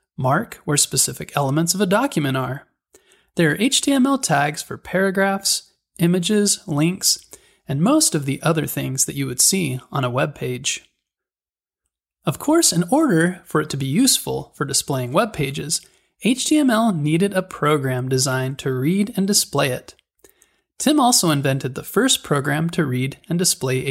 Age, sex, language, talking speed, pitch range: 20-39, male, English, 160 wpm, 135-205 Hz